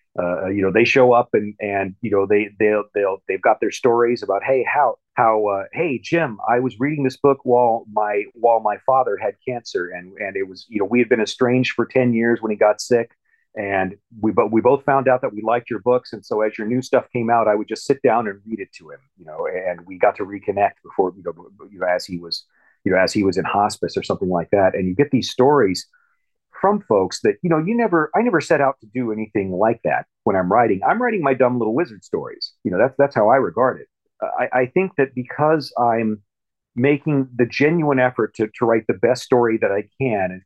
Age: 40-59